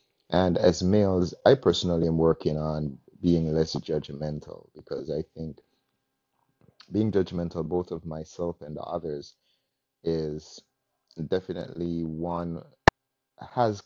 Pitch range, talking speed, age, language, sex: 80-85 Hz, 115 wpm, 30-49, English, male